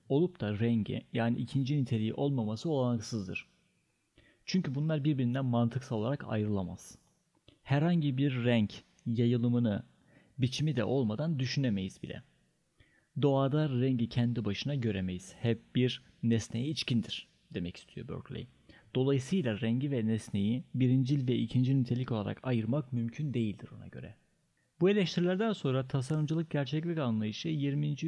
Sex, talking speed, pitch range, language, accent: male, 120 wpm, 115-145 Hz, Turkish, native